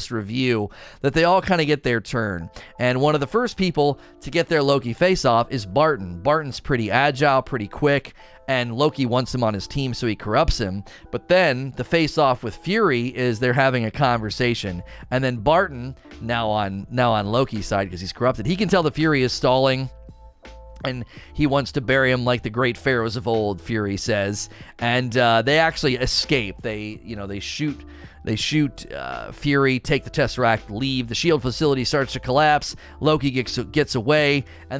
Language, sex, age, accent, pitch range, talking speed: English, male, 30-49, American, 115-145 Hz, 195 wpm